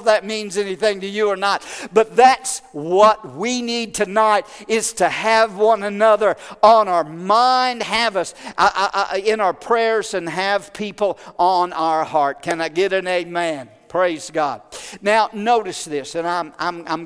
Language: English